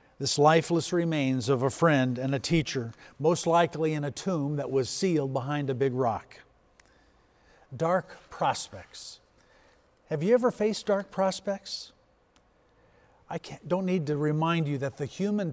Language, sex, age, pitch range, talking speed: English, male, 50-69, 135-180 Hz, 145 wpm